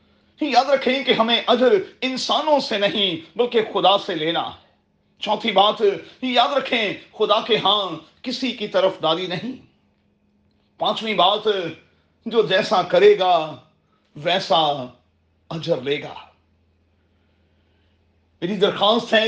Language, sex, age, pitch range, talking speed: Urdu, male, 40-59, 155-215 Hz, 115 wpm